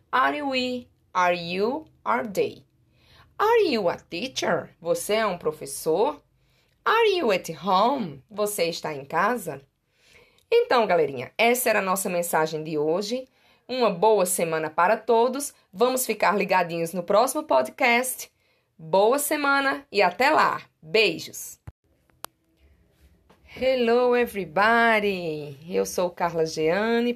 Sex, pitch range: female, 175-235 Hz